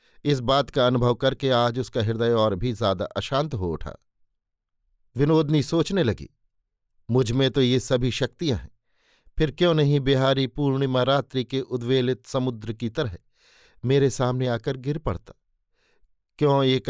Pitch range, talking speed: 120-140 Hz, 150 wpm